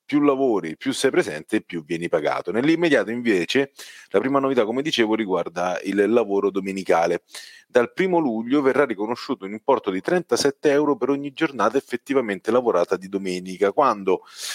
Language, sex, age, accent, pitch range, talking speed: Italian, male, 30-49, native, 95-145 Hz, 155 wpm